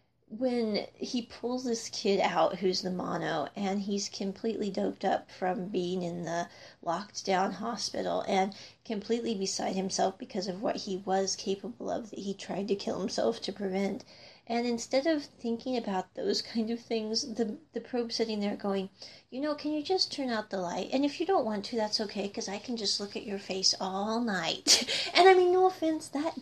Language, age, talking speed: English, 40-59, 200 wpm